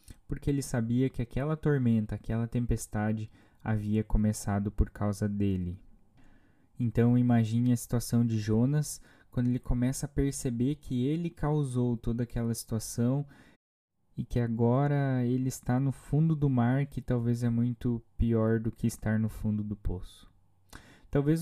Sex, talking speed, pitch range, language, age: male, 145 wpm, 110-135 Hz, Portuguese, 20-39